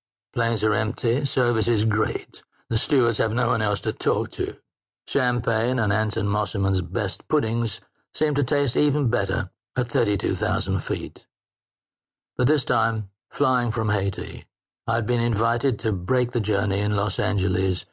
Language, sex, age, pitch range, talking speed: English, male, 60-79, 100-125 Hz, 150 wpm